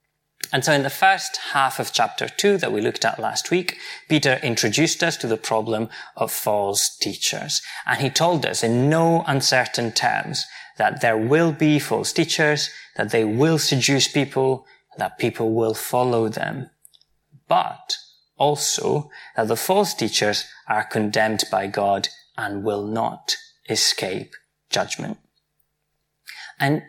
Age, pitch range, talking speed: 20-39, 115-165 Hz, 145 wpm